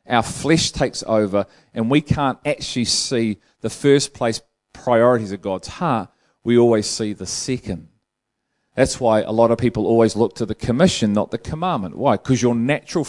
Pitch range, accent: 105-130 Hz, Australian